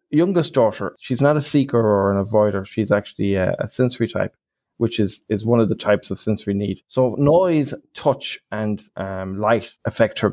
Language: English